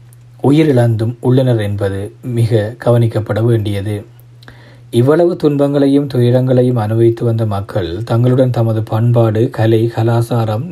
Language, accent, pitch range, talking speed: Tamil, native, 110-125 Hz, 95 wpm